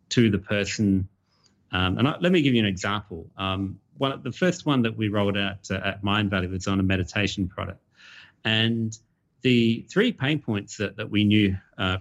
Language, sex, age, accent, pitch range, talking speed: English, male, 30-49, Australian, 95-110 Hz, 195 wpm